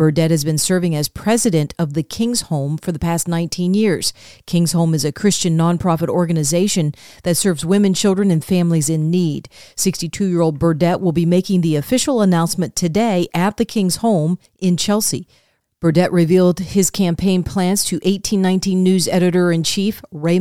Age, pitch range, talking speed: 40-59, 165-195 Hz, 160 wpm